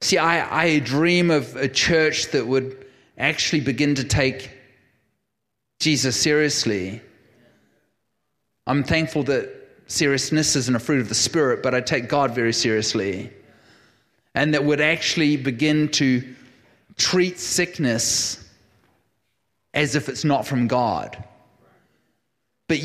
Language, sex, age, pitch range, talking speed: English, male, 30-49, 130-160 Hz, 120 wpm